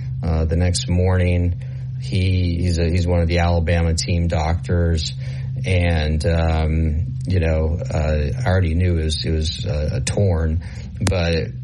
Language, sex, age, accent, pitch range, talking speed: English, male, 30-49, American, 85-105 Hz, 155 wpm